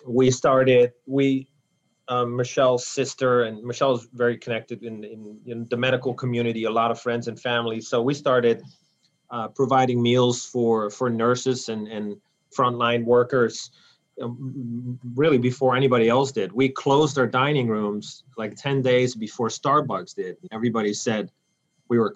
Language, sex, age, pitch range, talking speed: English, male, 30-49, 115-130 Hz, 150 wpm